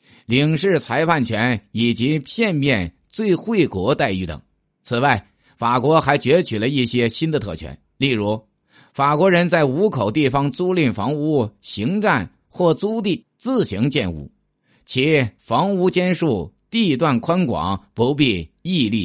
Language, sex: Chinese, male